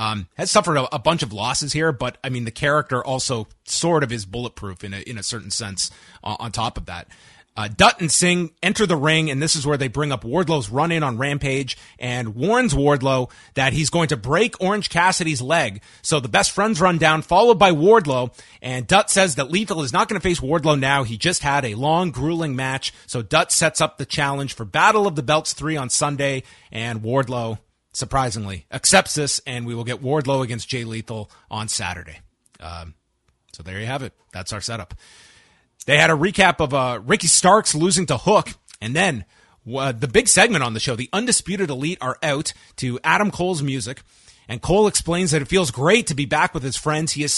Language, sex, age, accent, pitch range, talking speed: English, male, 30-49, American, 120-165 Hz, 215 wpm